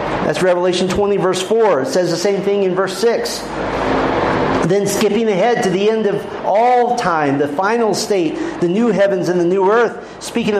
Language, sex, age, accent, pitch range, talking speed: English, male, 40-59, American, 170-215 Hz, 185 wpm